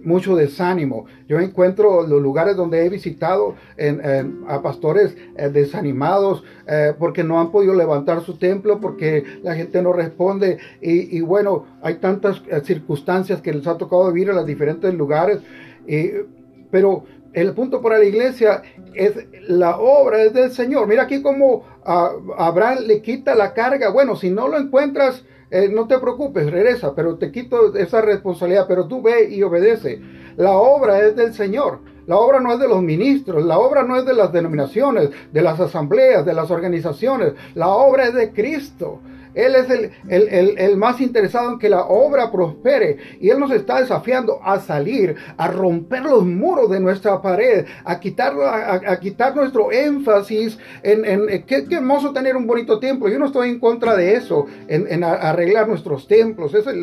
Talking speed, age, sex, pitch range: 180 wpm, 40-59, male, 175-245 Hz